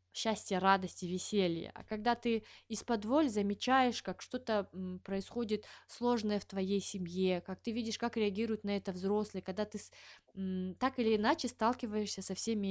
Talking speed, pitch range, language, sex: 160 wpm, 185-235 Hz, Russian, female